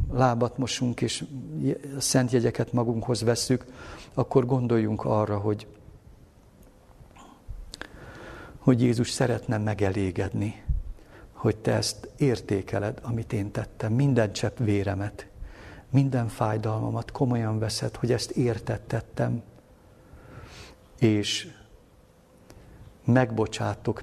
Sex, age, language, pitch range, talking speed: male, 60-79, Hungarian, 105-125 Hz, 85 wpm